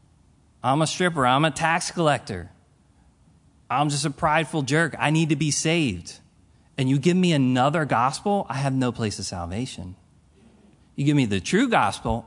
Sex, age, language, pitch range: male, 30-49, English, 120-175 Hz